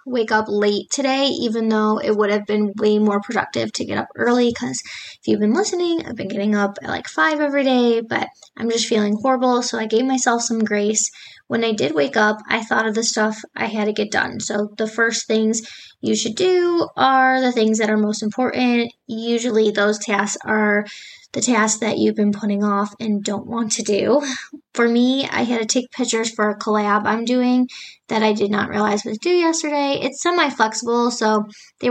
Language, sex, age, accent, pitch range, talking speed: English, female, 10-29, American, 210-250 Hz, 210 wpm